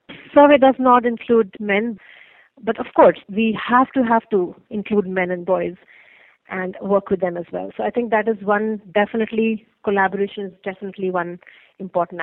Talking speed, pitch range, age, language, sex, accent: 170 wpm, 185-230 Hz, 30-49, English, female, Indian